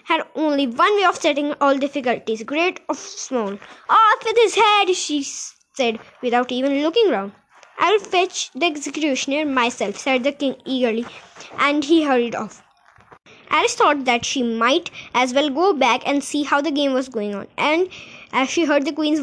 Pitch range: 255-325 Hz